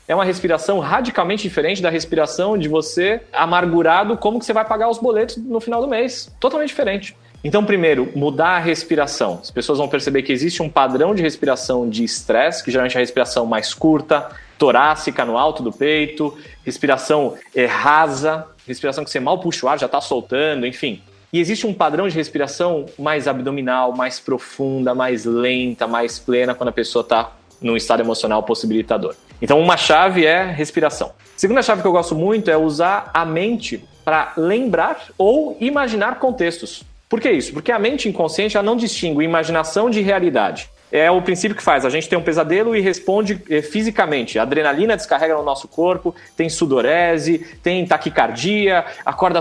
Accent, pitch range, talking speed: Brazilian, 140-195 Hz, 175 wpm